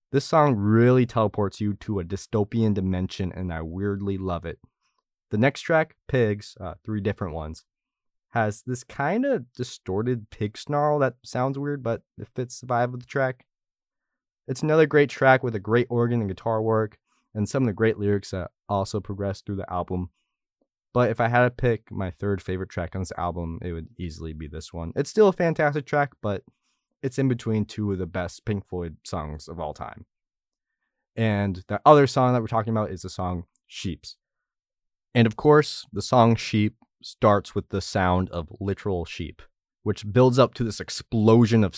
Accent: American